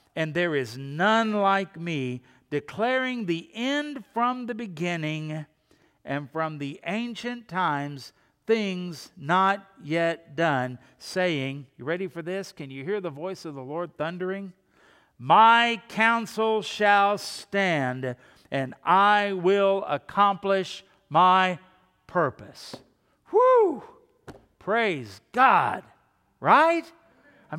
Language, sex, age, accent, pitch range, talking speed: English, male, 50-69, American, 140-195 Hz, 110 wpm